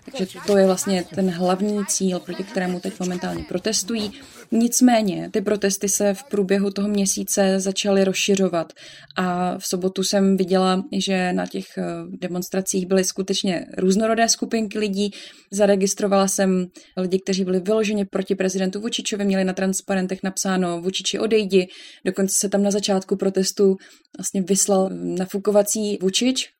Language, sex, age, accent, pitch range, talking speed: Czech, female, 20-39, native, 185-205 Hz, 135 wpm